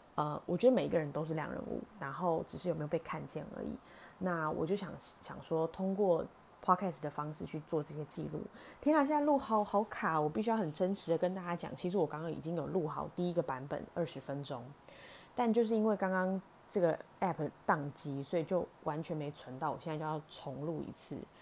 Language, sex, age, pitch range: Chinese, female, 20-39, 150-185 Hz